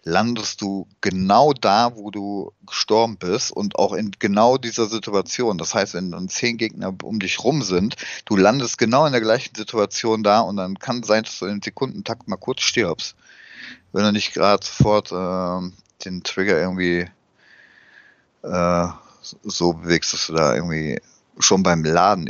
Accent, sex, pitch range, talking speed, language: German, male, 85-105 Hz, 165 wpm, German